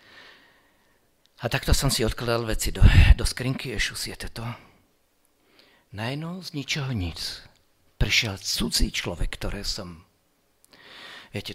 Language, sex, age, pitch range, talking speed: Slovak, male, 50-69, 105-140 Hz, 115 wpm